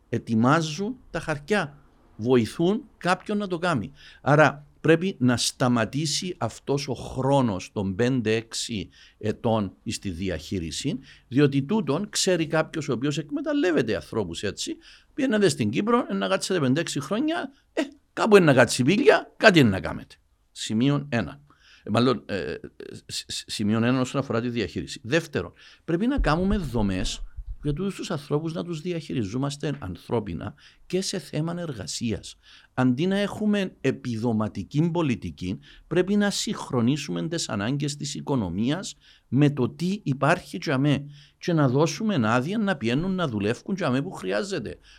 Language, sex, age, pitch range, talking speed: Greek, male, 60-79, 110-175 Hz, 135 wpm